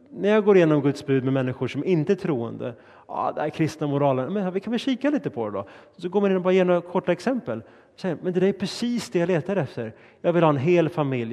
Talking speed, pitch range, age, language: 265 wpm, 125-170 Hz, 30-49, Swedish